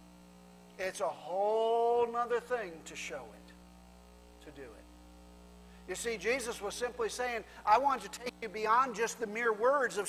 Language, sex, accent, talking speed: English, male, American, 165 wpm